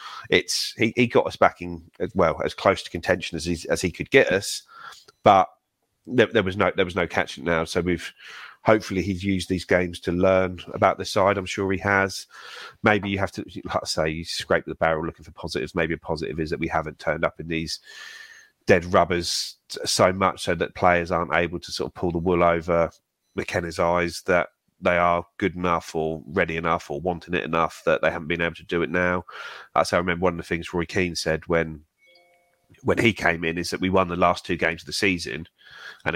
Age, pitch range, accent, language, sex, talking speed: 30-49, 85-95 Hz, British, English, male, 230 wpm